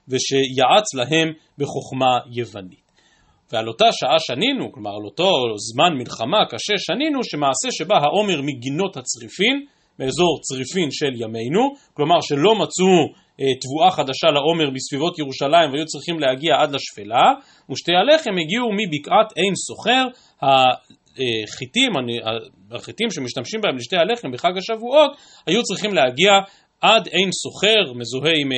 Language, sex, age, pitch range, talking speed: Hebrew, male, 40-59, 135-210 Hz, 125 wpm